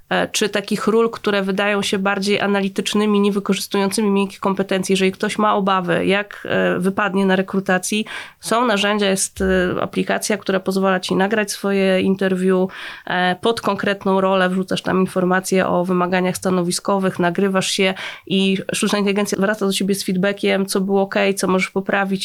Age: 20-39